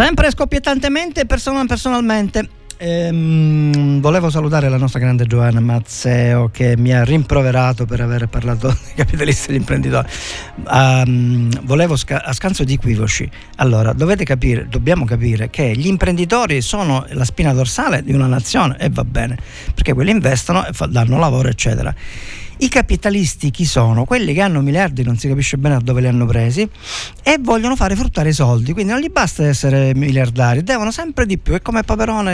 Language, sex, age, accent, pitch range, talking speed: Italian, male, 50-69, native, 125-170 Hz, 165 wpm